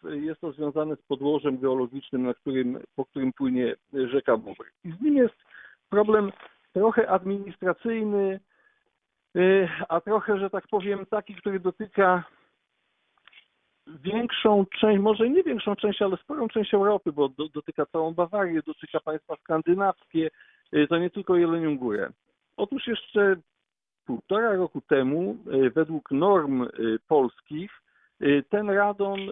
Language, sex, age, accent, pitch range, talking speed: Polish, male, 50-69, native, 155-210 Hz, 120 wpm